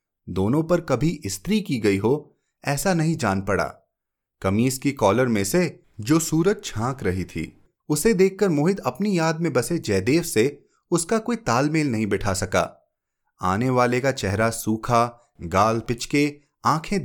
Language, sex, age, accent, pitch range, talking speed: Hindi, male, 30-49, native, 110-185 Hz, 155 wpm